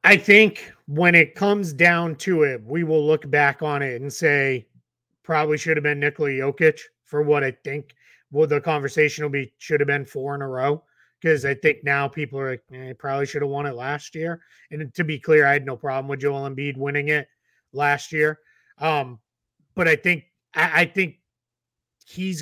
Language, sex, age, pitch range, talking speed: English, male, 30-49, 140-160 Hz, 205 wpm